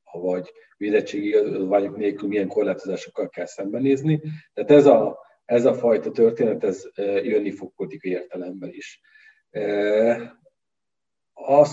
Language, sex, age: Hungarian, male, 40-59